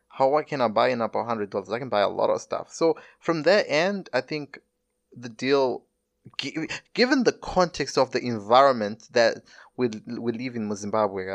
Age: 20-39